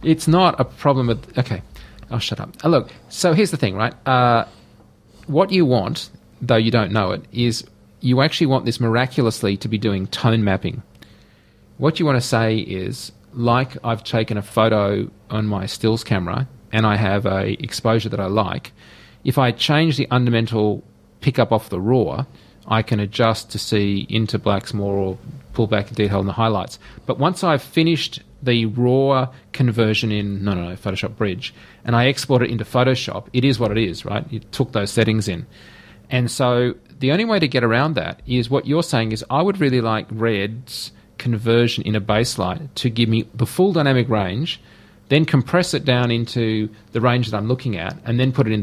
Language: English